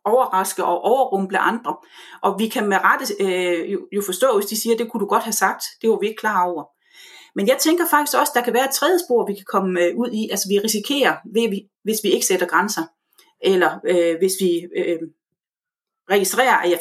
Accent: native